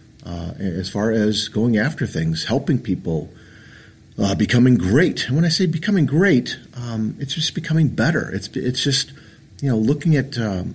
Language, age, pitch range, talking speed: English, 50-69, 105-150 Hz, 165 wpm